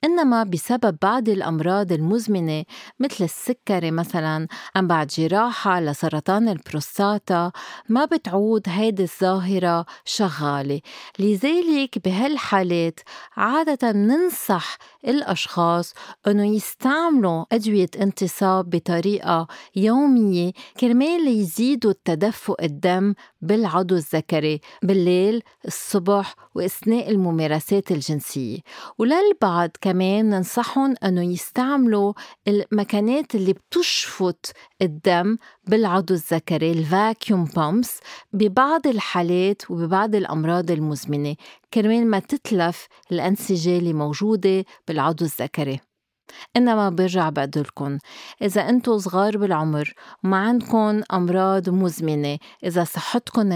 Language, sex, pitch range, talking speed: Arabic, female, 175-225 Hz, 90 wpm